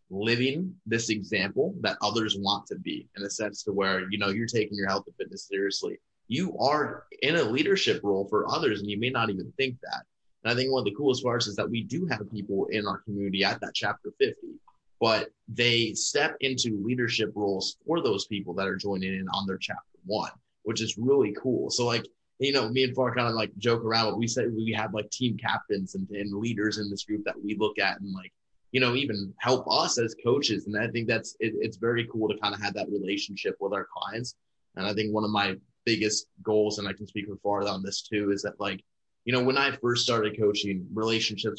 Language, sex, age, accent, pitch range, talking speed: English, male, 20-39, American, 100-115 Hz, 235 wpm